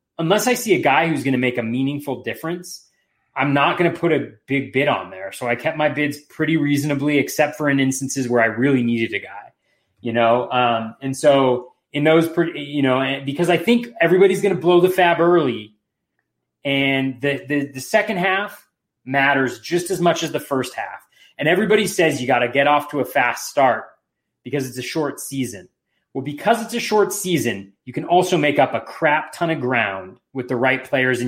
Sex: male